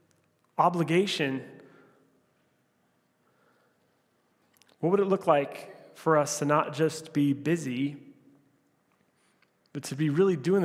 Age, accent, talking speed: 30-49, American, 100 wpm